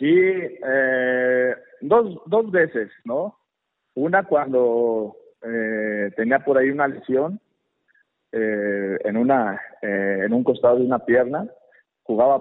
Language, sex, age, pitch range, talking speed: Spanish, male, 50-69, 110-135 Hz, 120 wpm